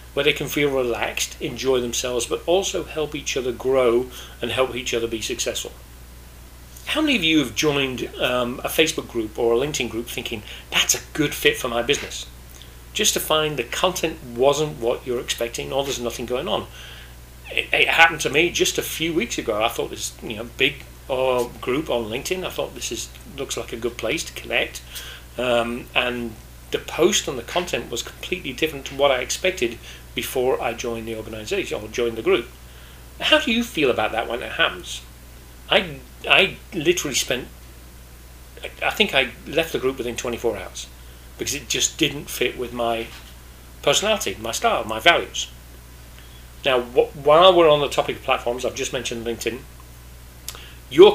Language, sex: English, male